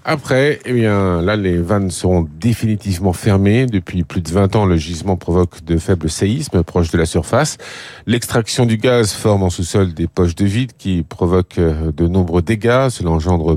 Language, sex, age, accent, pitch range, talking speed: French, male, 50-69, French, 90-120 Hz, 180 wpm